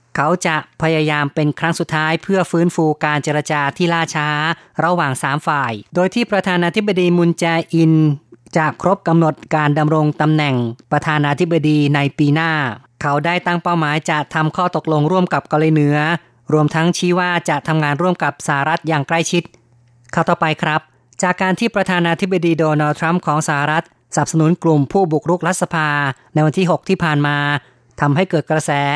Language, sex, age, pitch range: Thai, female, 30-49, 145-170 Hz